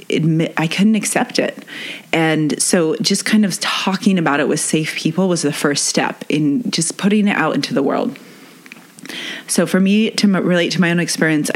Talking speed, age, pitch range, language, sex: 190 wpm, 30-49, 150-195 Hz, English, female